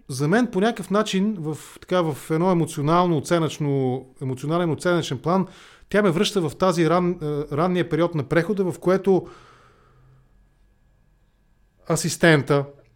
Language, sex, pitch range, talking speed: English, male, 140-185 Hz, 115 wpm